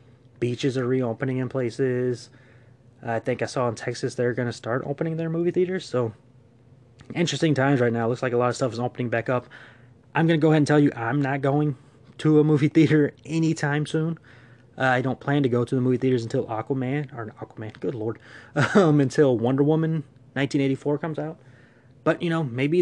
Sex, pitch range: male, 120-145 Hz